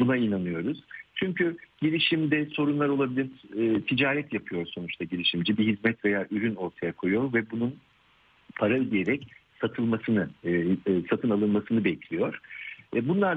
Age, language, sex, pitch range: 50-69, Turkish, male, 100-145 Hz